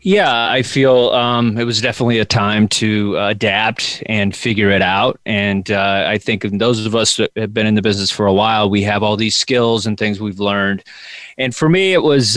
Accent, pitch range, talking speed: American, 105-125 Hz, 220 wpm